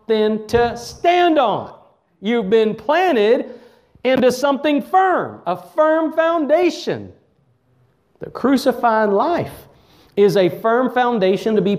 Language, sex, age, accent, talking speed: English, male, 40-59, American, 105 wpm